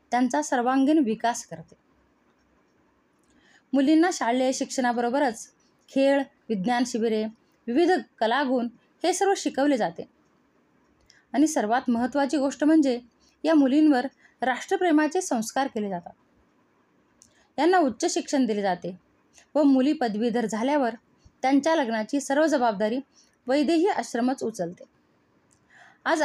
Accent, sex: native, female